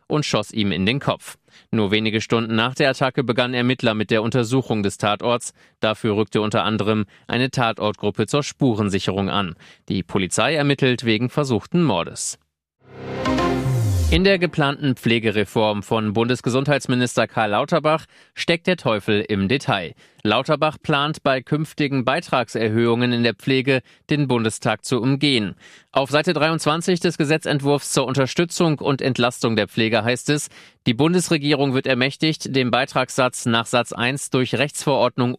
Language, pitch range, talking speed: German, 115-140 Hz, 140 wpm